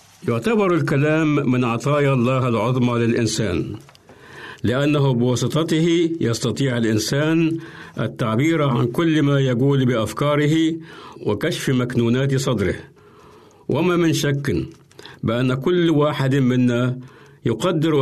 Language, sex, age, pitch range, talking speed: Arabic, male, 60-79, 120-150 Hz, 95 wpm